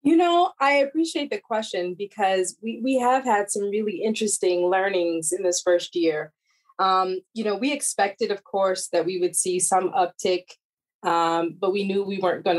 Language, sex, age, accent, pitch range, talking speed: English, female, 20-39, American, 175-220 Hz, 185 wpm